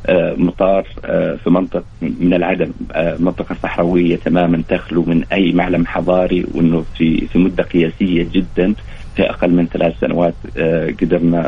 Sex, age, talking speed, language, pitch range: male, 40-59, 140 wpm, English, 85-95 Hz